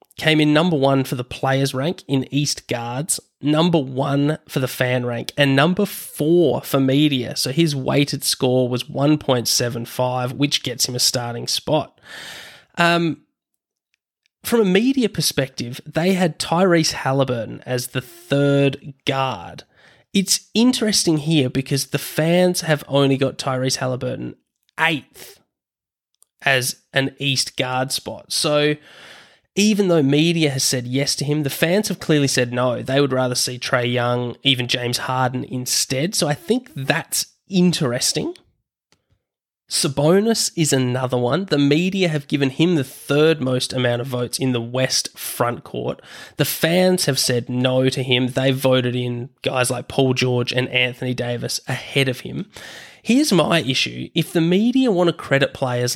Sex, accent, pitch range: male, Australian, 125-160 Hz